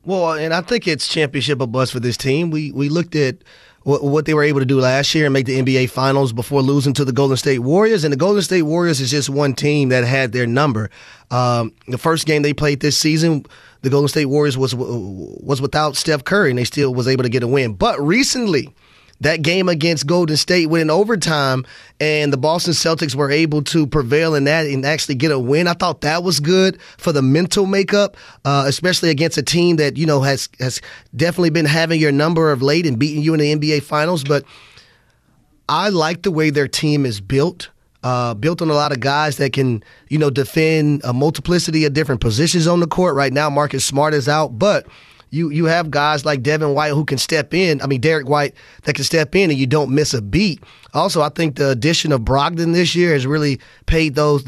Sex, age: male, 30-49